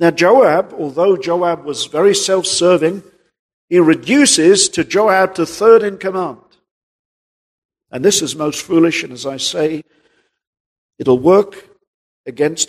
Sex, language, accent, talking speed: male, English, British, 130 wpm